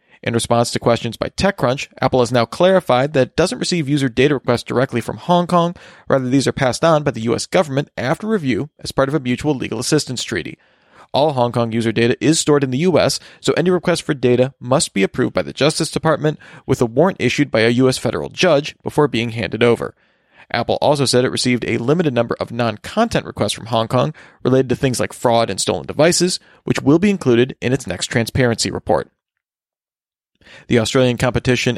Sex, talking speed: male, 205 wpm